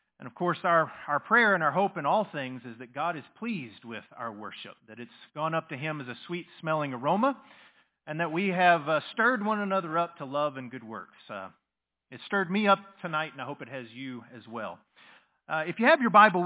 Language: English